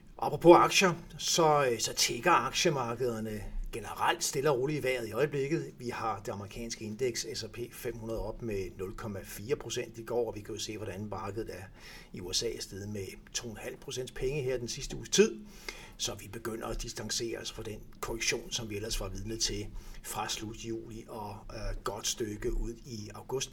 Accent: native